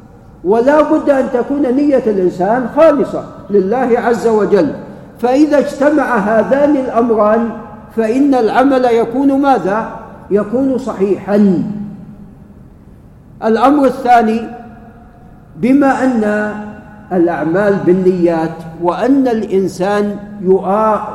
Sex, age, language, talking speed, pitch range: male, 50-69, Arabic, 80 wpm, 200-255 Hz